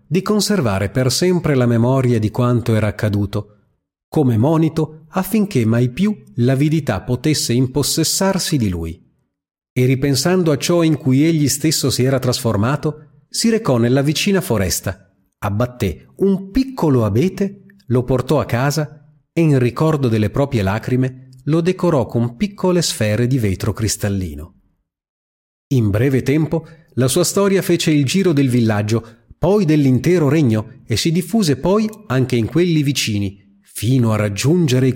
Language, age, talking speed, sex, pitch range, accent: Italian, 30-49, 145 wpm, male, 110-160 Hz, native